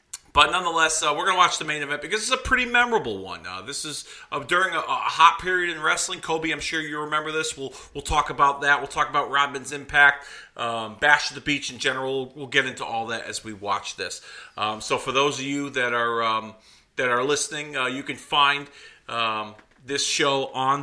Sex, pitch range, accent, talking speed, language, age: male, 125-165 Hz, American, 230 wpm, English, 40-59